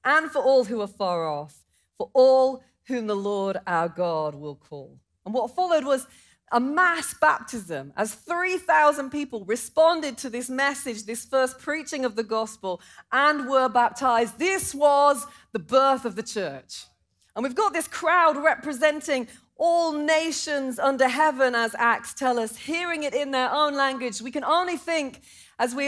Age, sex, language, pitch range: 30-49, female, English, 235-300 Hz